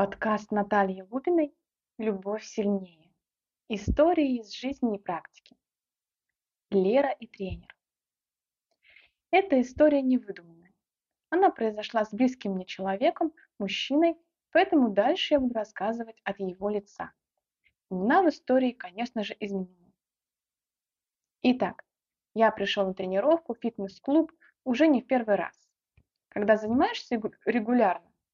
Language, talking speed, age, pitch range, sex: Russian, 110 wpm, 20-39, 200-300 Hz, female